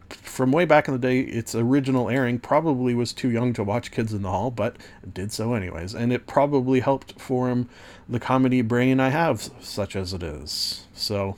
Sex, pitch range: male, 105-130 Hz